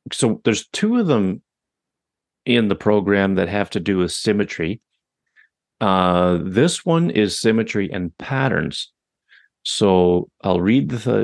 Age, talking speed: 40-59, 135 wpm